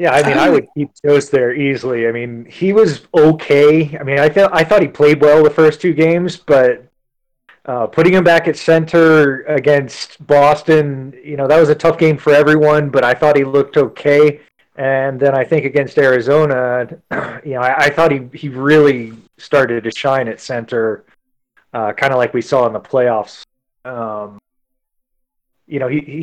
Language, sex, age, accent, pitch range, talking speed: English, male, 30-49, American, 130-155 Hz, 190 wpm